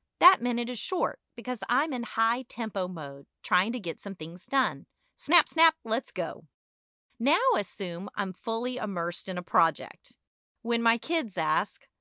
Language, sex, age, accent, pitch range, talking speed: English, female, 40-59, American, 195-285 Hz, 155 wpm